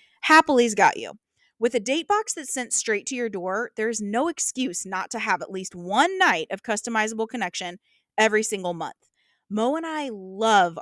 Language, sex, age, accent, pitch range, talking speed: English, female, 30-49, American, 200-280 Hz, 185 wpm